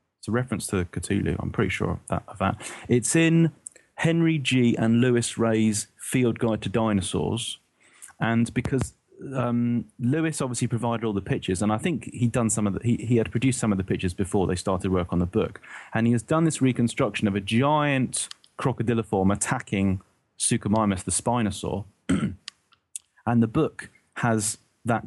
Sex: male